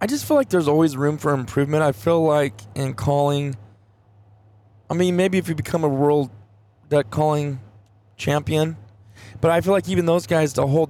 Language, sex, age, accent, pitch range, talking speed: English, male, 20-39, American, 105-155 Hz, 185 wpm